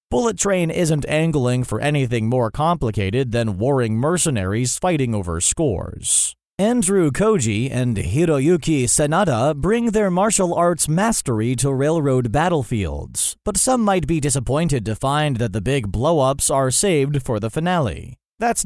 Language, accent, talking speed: English, American, 140 wpm